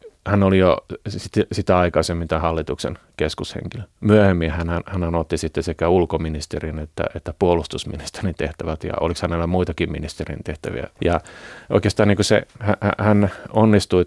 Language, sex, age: Finnish, male, 30-49